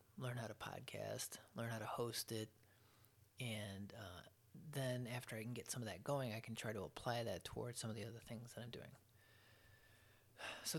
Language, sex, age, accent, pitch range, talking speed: English, male, 20-39, American, 110-120 Hz, 200 wpm